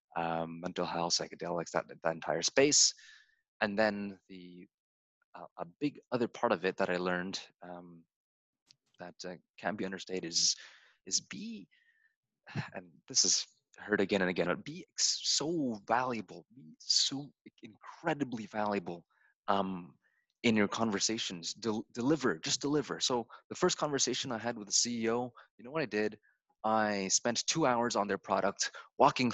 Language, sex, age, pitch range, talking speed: English, male, 20-39, 95-130 Hz, 150 wpm